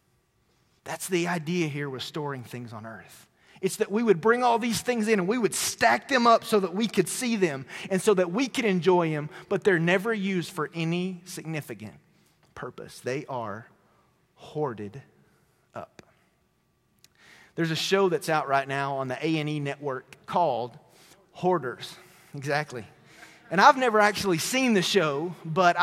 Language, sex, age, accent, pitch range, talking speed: English, male, 30-49, American, 170-225 Hz, 165 wpm